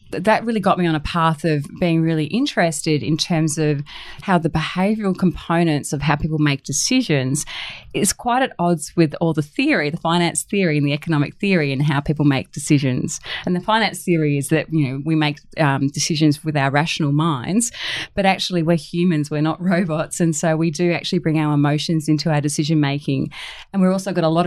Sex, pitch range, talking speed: female, 150-185 Hz, 205 wpm